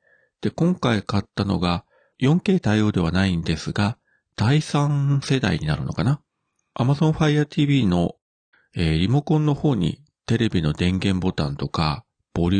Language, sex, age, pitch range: Japanese, male, 40-59, 90-130 Hz